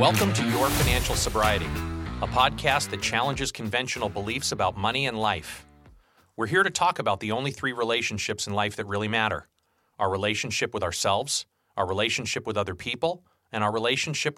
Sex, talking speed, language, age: male, 170 wpm, English, 40-59